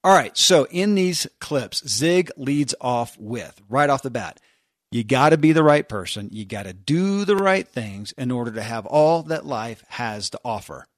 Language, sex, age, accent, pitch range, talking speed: English, male, 40-59, American, 120-165 Hz, 210 wpm